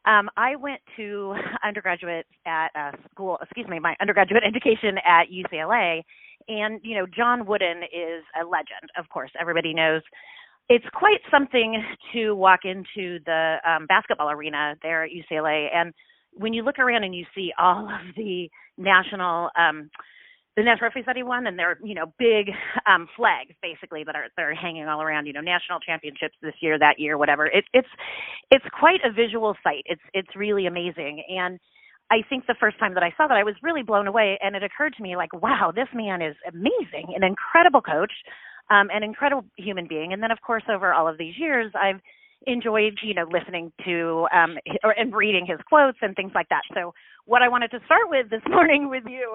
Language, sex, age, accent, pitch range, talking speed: English, female, 30-49, American, 175-245 Hz, 195 wpm